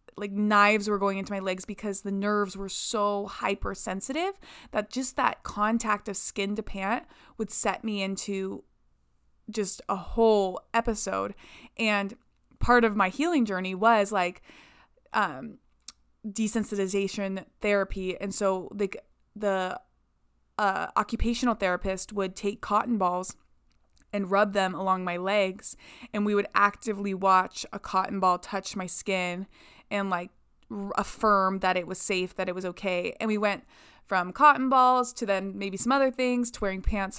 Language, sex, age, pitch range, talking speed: English, female, 20-39, 195-235 Hz, 150 wpm